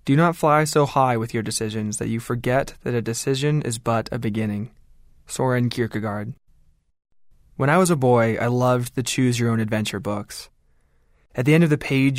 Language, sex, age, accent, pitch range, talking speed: English, male, 20-39, American, 110-145 Hz, 175 wpm